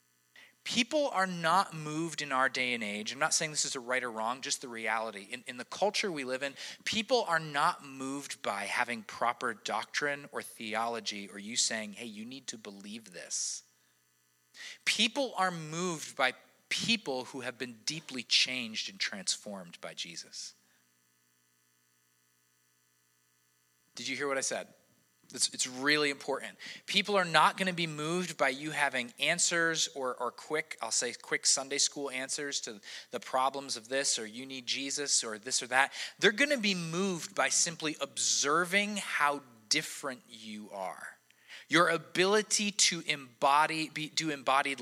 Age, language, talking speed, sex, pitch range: 30-49, English, 160 wpm, male, 115-165 Hz